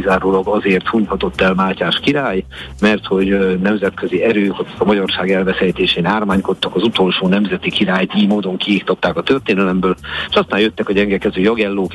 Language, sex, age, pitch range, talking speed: Hungarian, male, 50-69, 95-110 Hz, 140 wpm